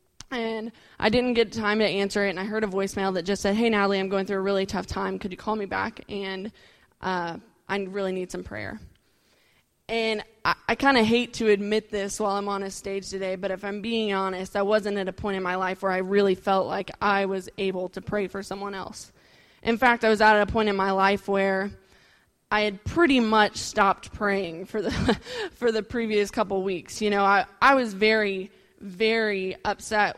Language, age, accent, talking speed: English, 20-39, American, 220 wpm